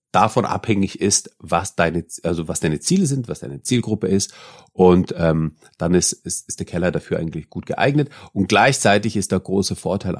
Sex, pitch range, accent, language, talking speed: male, 90-120 Hz, German, German, 175 wpm